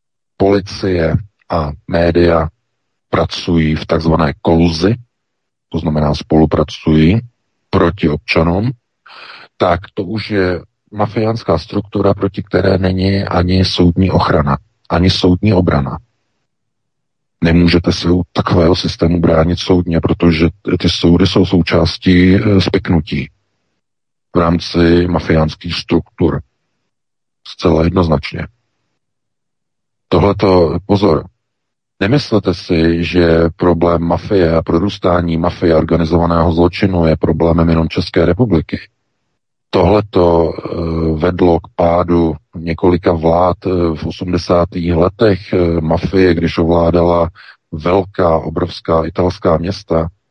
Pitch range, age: 85-95 Hz, 40-59